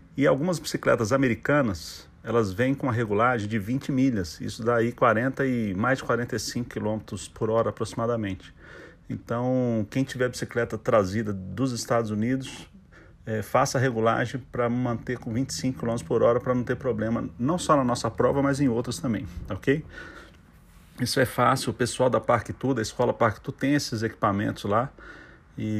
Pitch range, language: 110-130 Hz, Portuguese